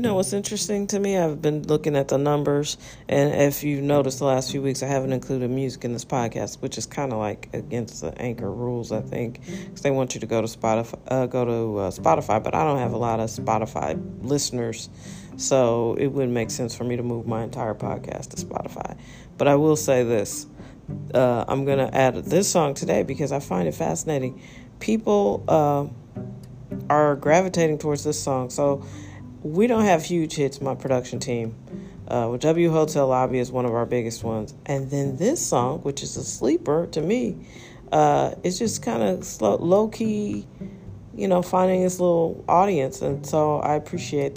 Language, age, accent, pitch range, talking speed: English, 40-59, American, 125-155 Hz, 190 wpm